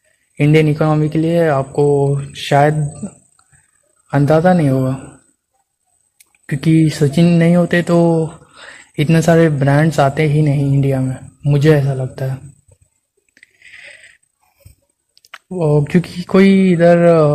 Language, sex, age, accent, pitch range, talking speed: Hindi, male, 20-39, native, 140-160 Hz, 105 wpm